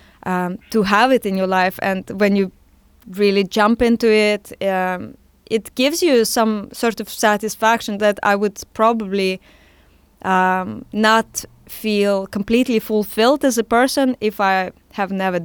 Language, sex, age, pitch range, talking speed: English, female, 20-39, 190-230 Hz, 150 wpm